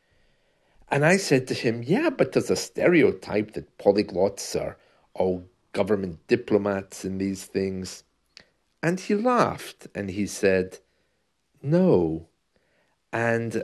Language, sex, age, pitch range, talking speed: English, male, 50-69, 95-150 Hz, 120 wpm